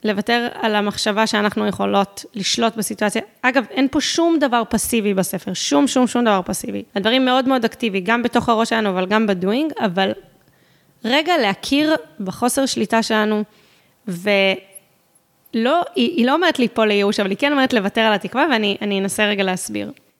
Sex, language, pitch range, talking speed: female, Hebrew, 200-245 Hz, 160 wpm